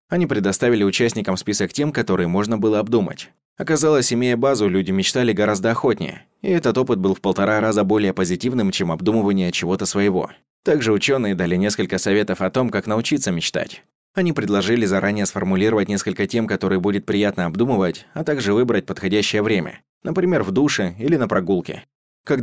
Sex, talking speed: male, 165 wpm